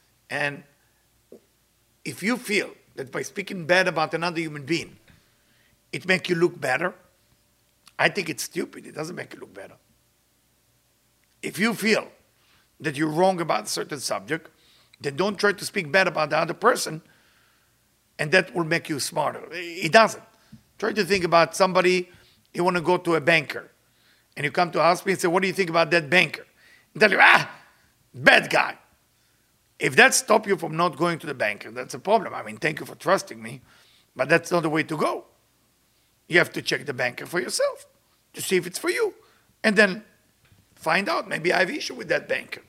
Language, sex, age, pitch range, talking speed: English, male, 50-69, 160-200 Hz, 200 wpm